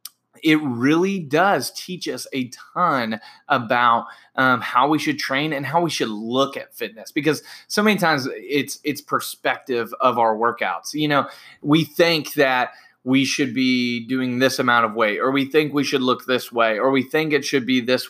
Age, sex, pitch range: 20-39, male, 120-145 Hz